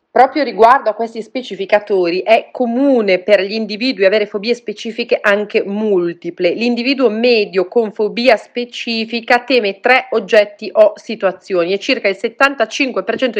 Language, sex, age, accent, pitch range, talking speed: Italian, female, 30-49, native, 190-240 Hz, 130 wpm